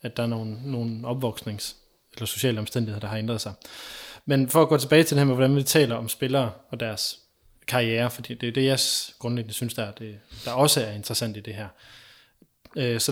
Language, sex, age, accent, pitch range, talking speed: Danish, male, 20-39, native, 115-135 Hz, 205 wpm